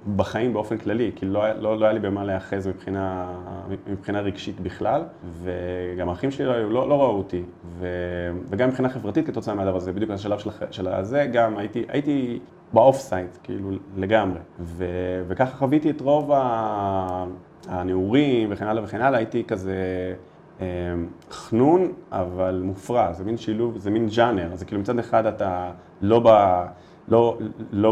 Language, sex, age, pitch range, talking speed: English, male, 30-49, 95-115 Hz, 105 wpm